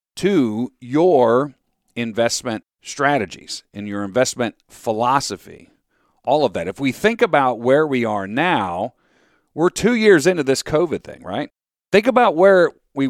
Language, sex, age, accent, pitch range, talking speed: English, male, 40-59, American, 115-165 Hz, 140 wpm